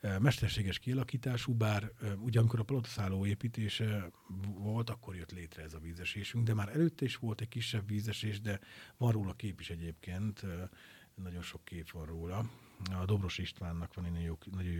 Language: Hungarian